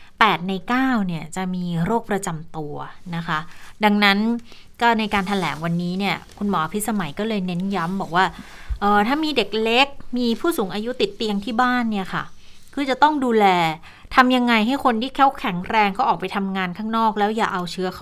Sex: female